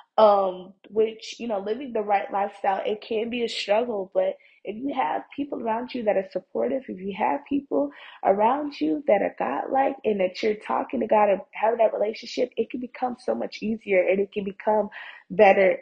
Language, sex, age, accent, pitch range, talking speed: English, female, 20-39, American, 185-225 Hz, 200 wpm